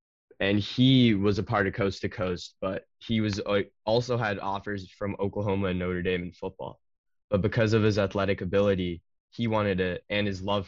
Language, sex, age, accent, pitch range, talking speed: English, male, 10-29, American, 85-100 Hz, 195 wpm